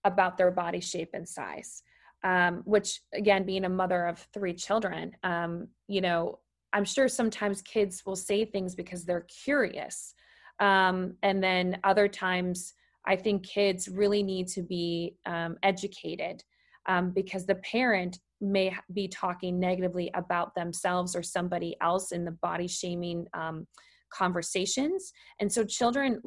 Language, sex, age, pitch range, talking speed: English, female, 20-39, 180-205 Hz, 145 wpm